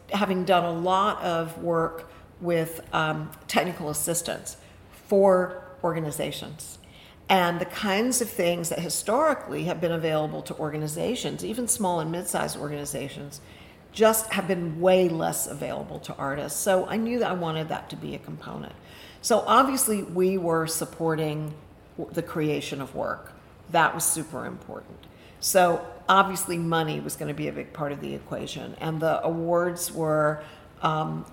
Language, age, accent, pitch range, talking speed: English, 50-69, American, 155-185 Hz, 150 wpm